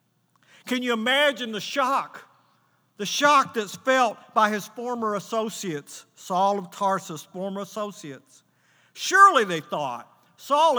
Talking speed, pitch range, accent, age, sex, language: 120 wpm, 170-230 Hz, American, 50-69, male, English